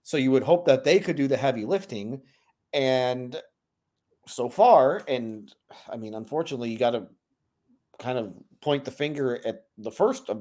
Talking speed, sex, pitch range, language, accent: 175 wpm, male, 130-160 Hz, English, American